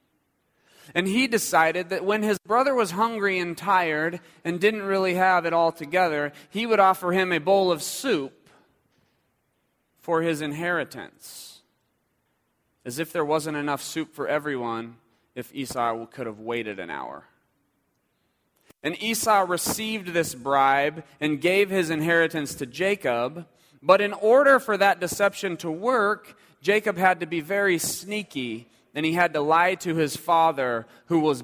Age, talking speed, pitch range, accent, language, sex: 30-49, 150 wpm, 145-185 Hz, American, English, male